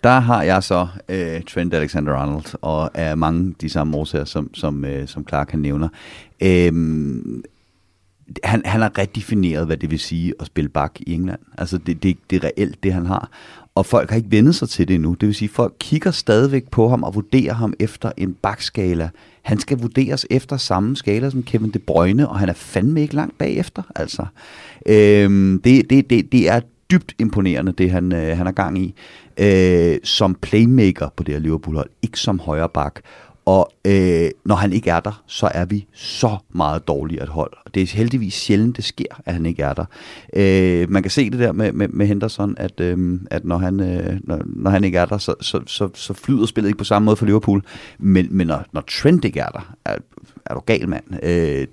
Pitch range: 85-115 Hz